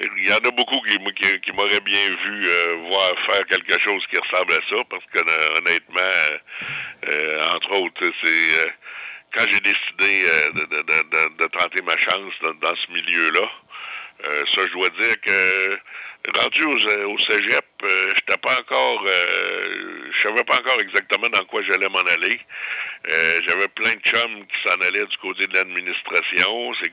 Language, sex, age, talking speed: French, male, 60-79, 180 wpm